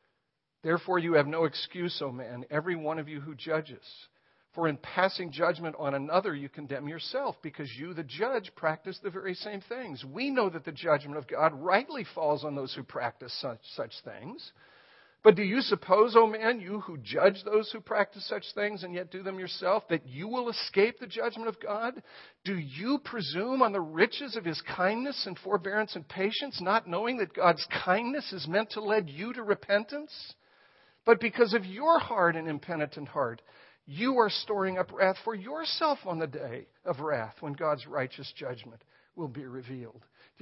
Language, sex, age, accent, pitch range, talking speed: English, male, 50-69, American, 155-230 Hz, 190 wpm